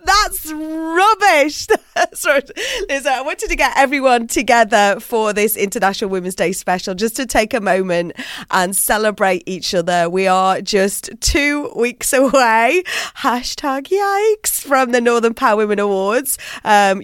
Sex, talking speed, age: female, 135 wpm, 30-49